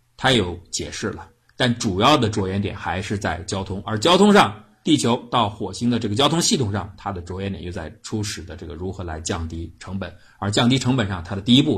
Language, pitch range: Chinese, 90-120 Hz